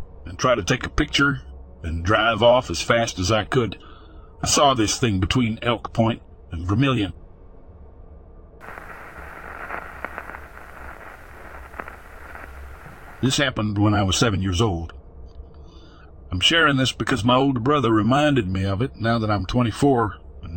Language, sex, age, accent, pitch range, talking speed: English, male, 60-79, American, 85-135 Hz, 135 wpm